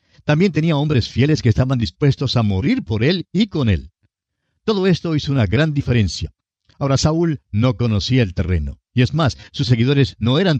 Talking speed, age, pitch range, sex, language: 185 wpm, 50-69, 100-135 Hz, male, Spanish